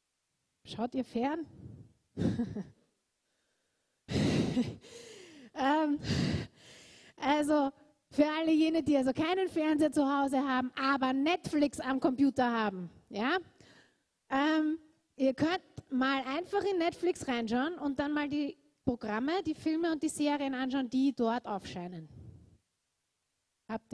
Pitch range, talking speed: 235-310 Hz, 110 wpm